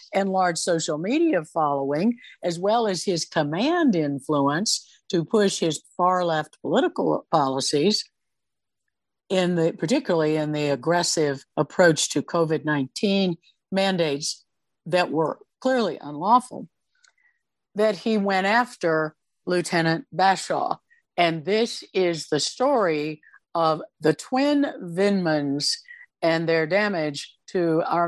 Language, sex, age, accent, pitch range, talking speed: English, female, 50-69, American, 160-215 Hz, 110 wpm